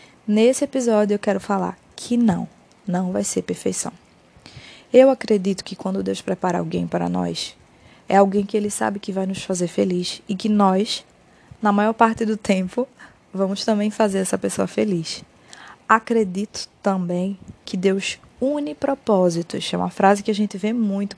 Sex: female